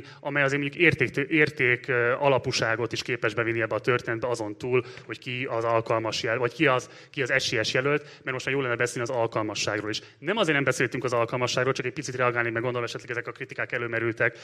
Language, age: Hungarian, 30-49